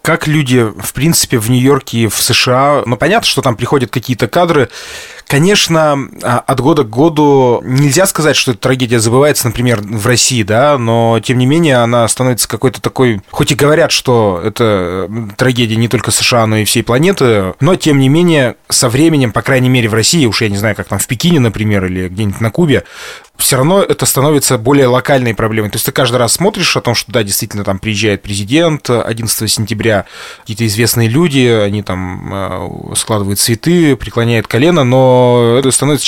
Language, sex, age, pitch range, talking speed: Russian, male, 20-39, 115-145 Hz, 185 wpm